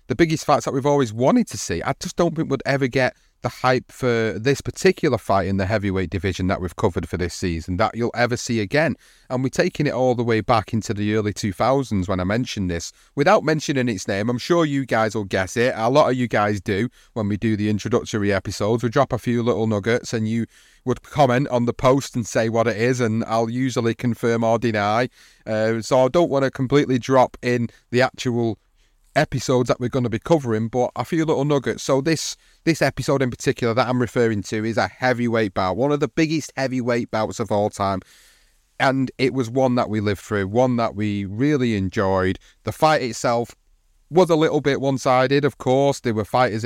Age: 30-49